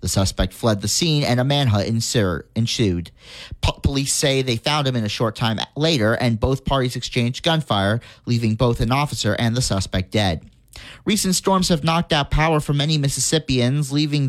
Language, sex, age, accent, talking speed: English, male, 30-49, American, 175 wpm